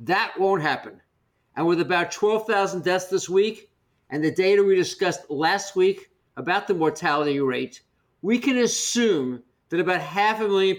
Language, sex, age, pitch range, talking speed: English, male, 50-69, 165-230 Hz, 160 wpm